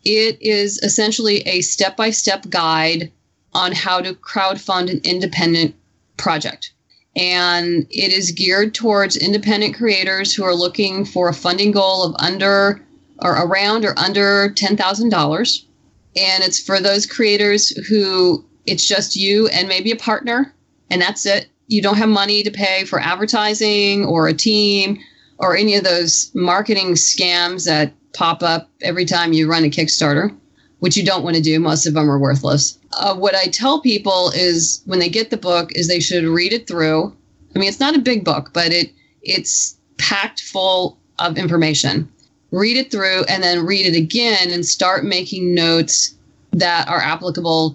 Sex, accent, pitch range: female, American, 170-205 Hz